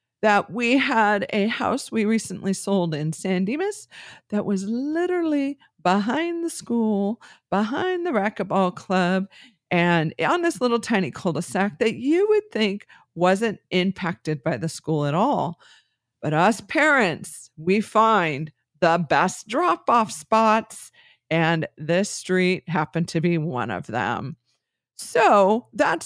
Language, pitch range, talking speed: English, 160-230 Hz, 135 wpm